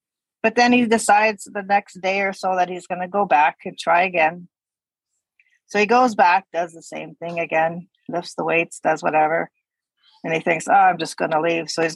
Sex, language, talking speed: female, English, 215 wpm